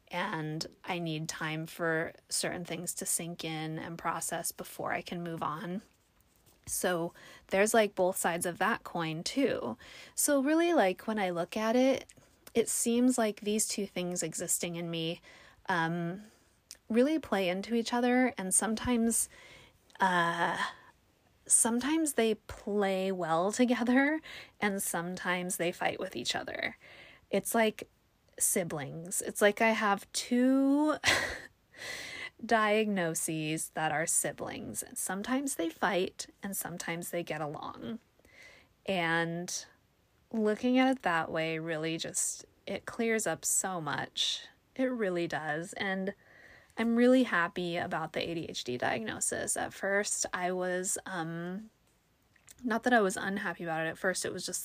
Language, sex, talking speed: English, female, 135 wpm